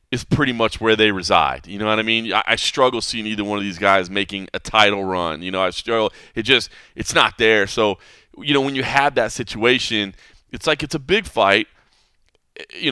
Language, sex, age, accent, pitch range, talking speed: English, male, 30-49, American, 100-115 Hz, 220 wpm